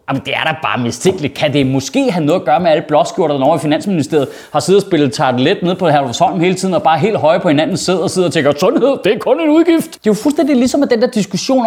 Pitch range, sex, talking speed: 160-245 Hz, male, 300 wpm